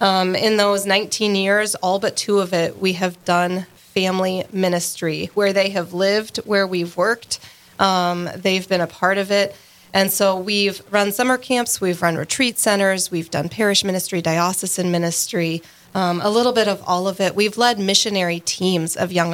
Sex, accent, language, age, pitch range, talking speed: female, American, English, 30-49, 175-210 Hz, 185 wpm